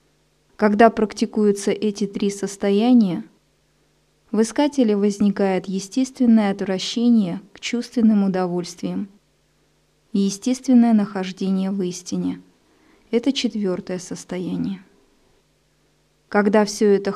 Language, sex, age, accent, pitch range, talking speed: Russian, female, 20-39, native, 195-225 Hz, 85 wpm